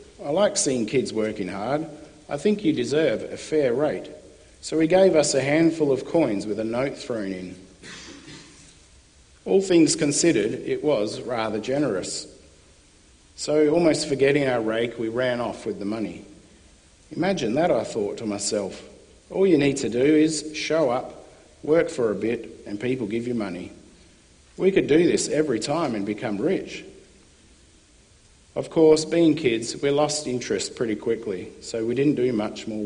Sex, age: male, 50-69